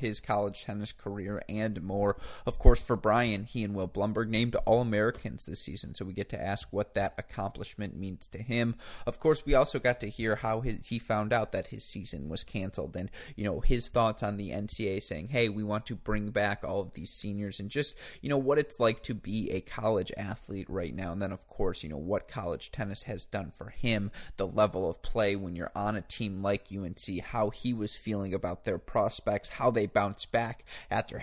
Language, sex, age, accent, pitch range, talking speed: English, male, 30-49, American, 95-115 Hz, 220 wpm